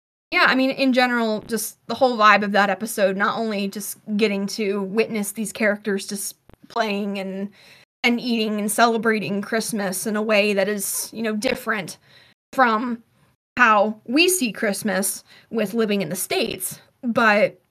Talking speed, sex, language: 160 wpm, female, English